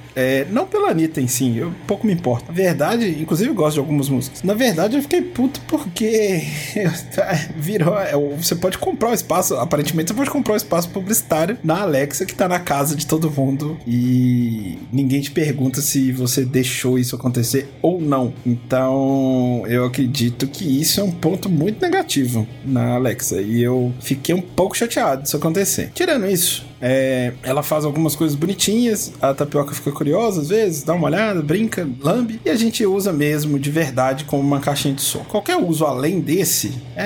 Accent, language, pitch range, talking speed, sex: Brazilian, Portuguese, 135-190 Hz, 185 wpm, male